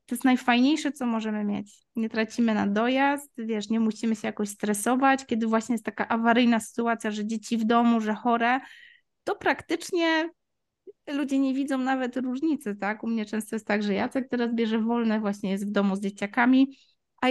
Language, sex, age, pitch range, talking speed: Polish, female, 20-39, 225-270 Hz, 175 wpm